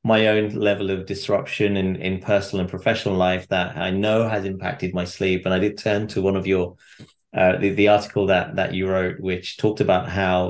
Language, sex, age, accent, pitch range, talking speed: English, male, 30-49, British, 95-105 Hz, 215 wpm